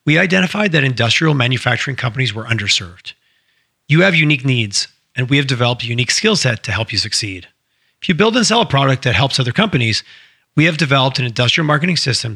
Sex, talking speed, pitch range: male, 205 wpm, 120-160 Hz